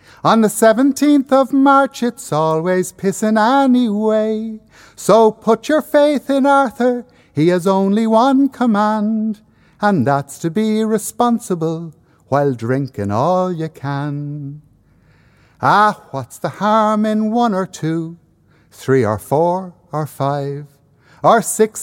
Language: English